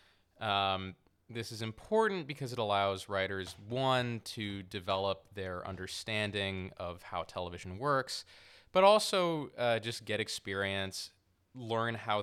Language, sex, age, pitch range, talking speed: English, male, 20-39, 95-110 Hz, 125 wpm